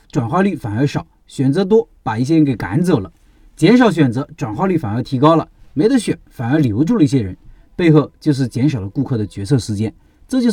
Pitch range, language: 125-170 Hz, Chinese